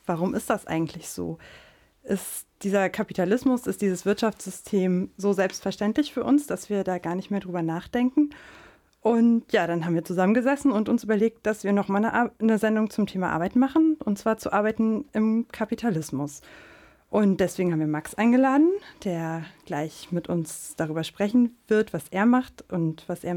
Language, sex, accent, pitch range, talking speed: German, female, German, 175-225 Hz, 170 wpm